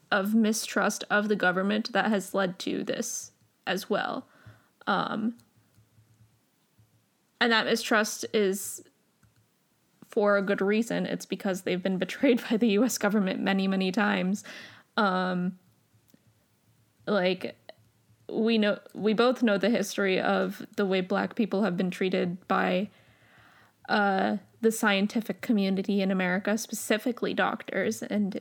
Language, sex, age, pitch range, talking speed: English, female, 10-29, 190-225 Hz, 125 wpm